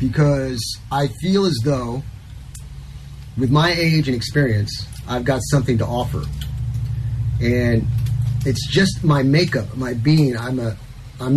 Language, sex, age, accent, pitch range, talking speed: English, male, 30-49, American, 115-155 Hz, 130 wpm